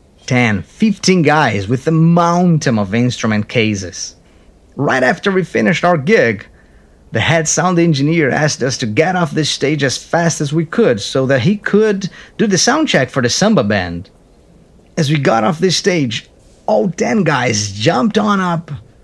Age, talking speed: 30-49, 175 wpm